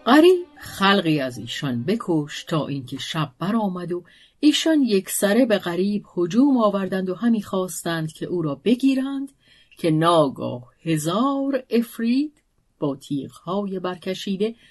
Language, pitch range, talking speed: Persian, 155-230 Hz, 125 wpm